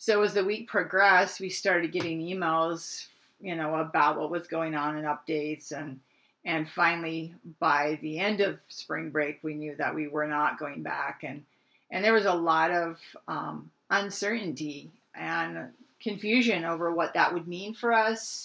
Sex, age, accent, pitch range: female, 40-59, American, 160-200 Hz